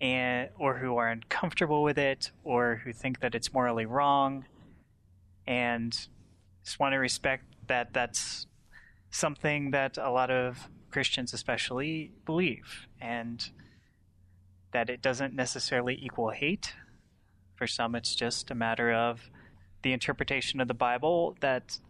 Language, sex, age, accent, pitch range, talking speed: English, male, 20-39, American, 110-150 Hz, 135 wpm